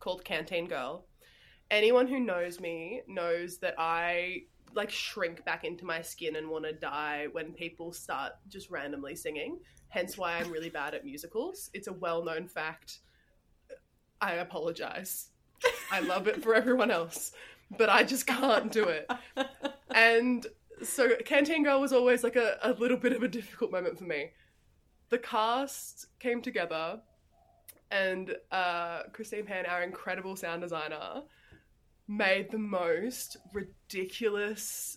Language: English